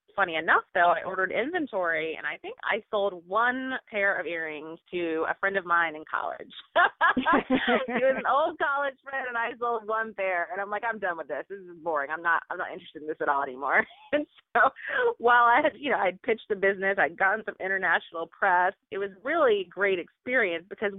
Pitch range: 160-210 Hz